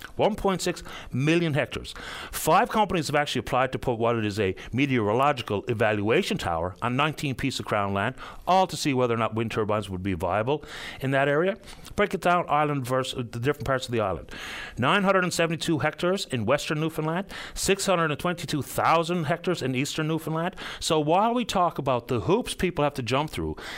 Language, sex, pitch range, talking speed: English, male, 120-165 Hz, 180 wpm